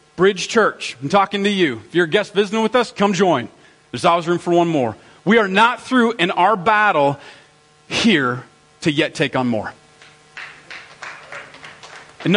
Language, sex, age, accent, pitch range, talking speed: English, male, 40-59, American, 150-195 Hz, 170 wpm